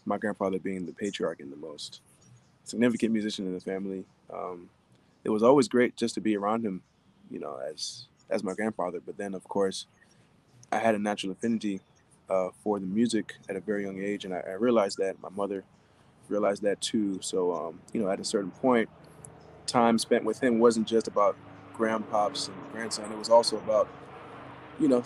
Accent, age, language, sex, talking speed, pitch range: American, 20-39, English, male, 195 wpm, 100-125 Hz